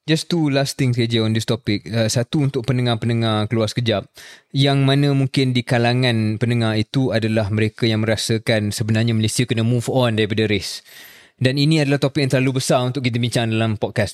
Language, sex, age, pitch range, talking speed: Malay, male, 20-39, 110-135 Hz, 185 wpm